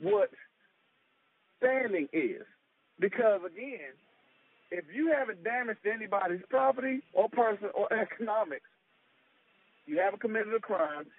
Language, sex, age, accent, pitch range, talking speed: English, male, 50-69, American, 195-255 Hz, 105 wpm